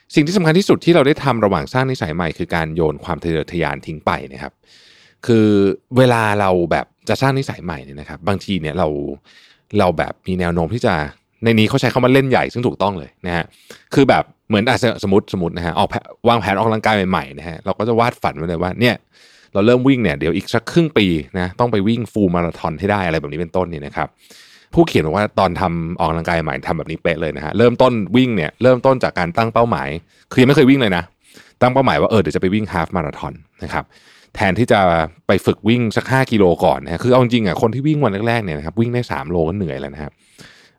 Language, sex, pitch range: Thai, male, 85-125 Hz